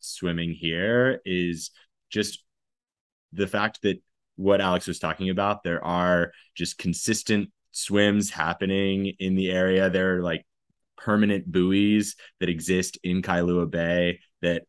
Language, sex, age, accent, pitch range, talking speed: English, male, 20-39, American, 85-95 Hz, 130 wpm